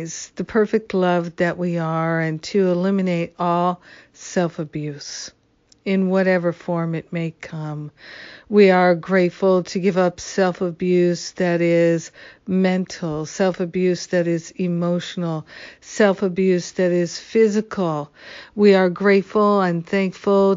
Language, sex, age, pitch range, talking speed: English, female, 50-69, 175-195 Hz, 115 wpm